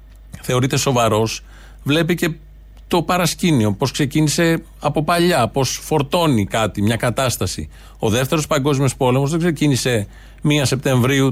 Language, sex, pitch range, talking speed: Greek, male, 125-155 Hz, 120 wpm